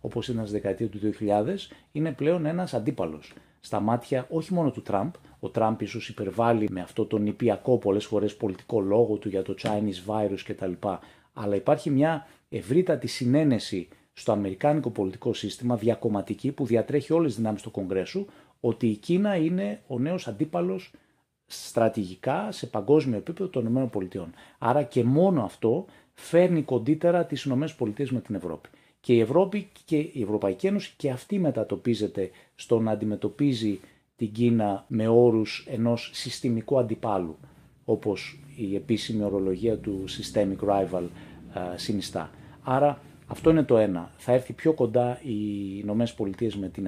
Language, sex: Greek, male